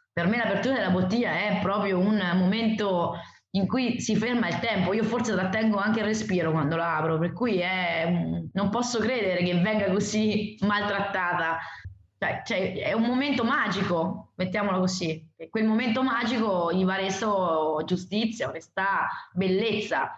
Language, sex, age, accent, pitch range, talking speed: Italian, female, 20-39, native, 175-215 Hz, 150 wpm